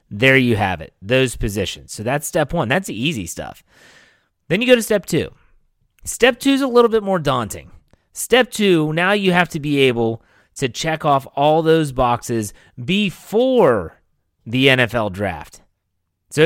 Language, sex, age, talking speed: English, male, 30-49, 170 wpm